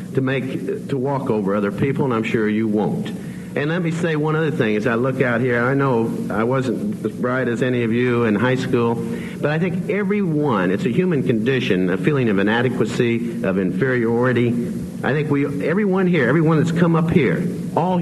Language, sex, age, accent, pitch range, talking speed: English, male, 50-69, American, 115-160 Hz, 205 wpm